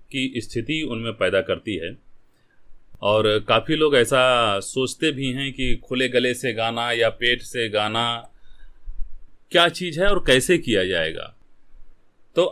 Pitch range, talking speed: 110-160 Hz, 145 wpm